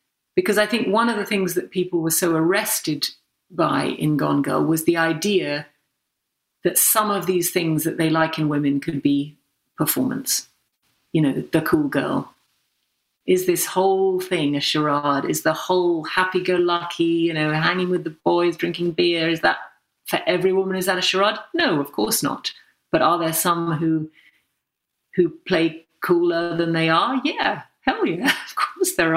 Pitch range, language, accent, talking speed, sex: 160-195 Hz, English, British, 175 wpm, female